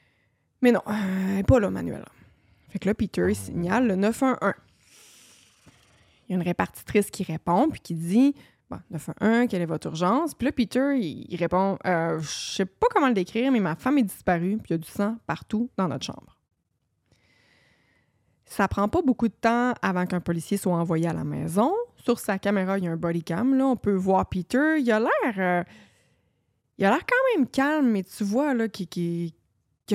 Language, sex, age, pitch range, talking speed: French, female, 20-39, 170-225 Hz, 215 wpm